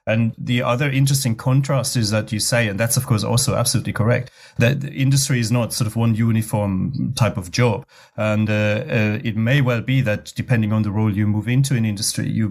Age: 30-49